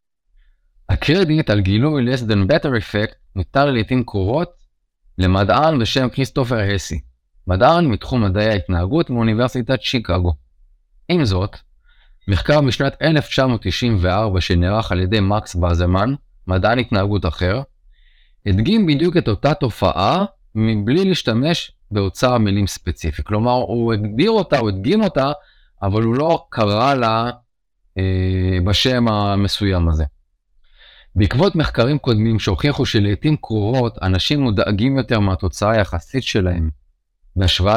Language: Hebrew